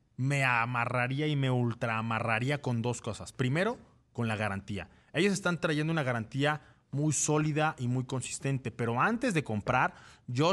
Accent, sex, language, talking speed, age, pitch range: Mexican, male, Spanish, 155 wpm, 30-49, 115-145 Hz